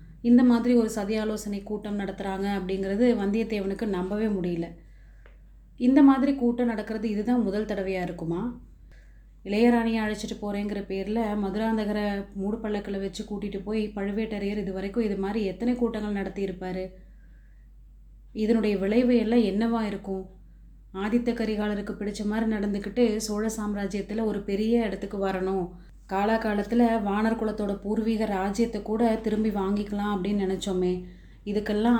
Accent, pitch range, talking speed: native, 195-225 Hz, 115 wpm